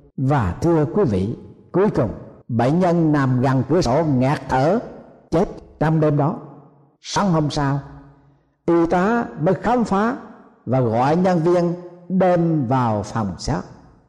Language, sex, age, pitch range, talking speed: Vietnamese, male, 60-79, 130-175 Hz, 145 wpm